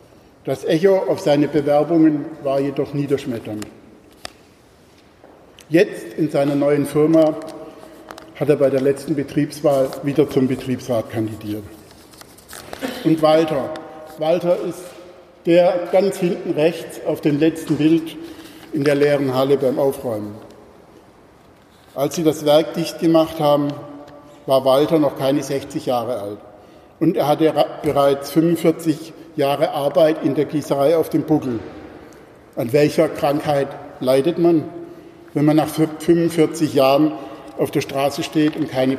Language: German